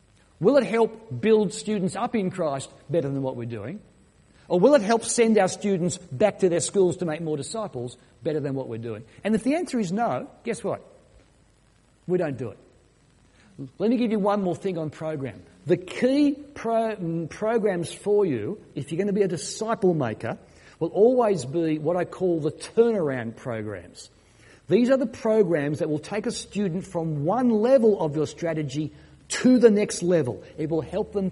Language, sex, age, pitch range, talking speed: English, male, 50-69, 135-205 Hz, 190 wpm